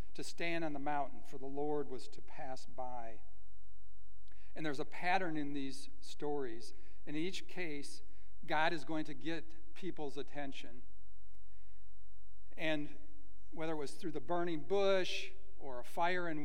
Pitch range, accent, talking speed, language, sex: 95-150 Hz, American, 150 wpm, English, male